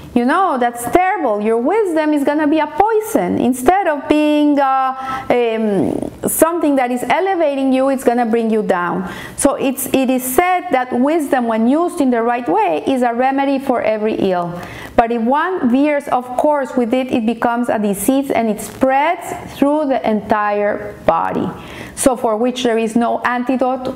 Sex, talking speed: female, 180 wpm